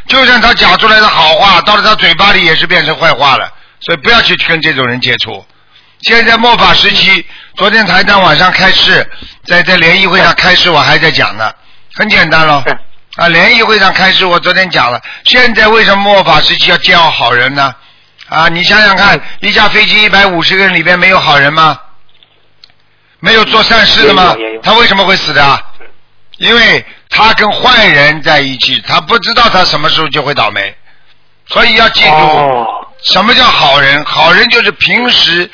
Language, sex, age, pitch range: Chinese, male, 50-69, 160-210 Hz